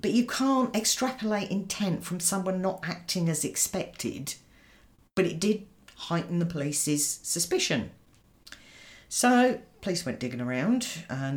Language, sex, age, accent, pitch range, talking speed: English, female, 40-59, British, 130-180 Hz, 125 wpm